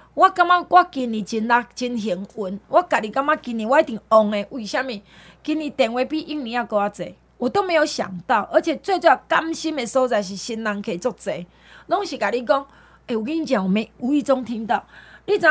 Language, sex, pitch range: Chinese, female, 230-330 Hz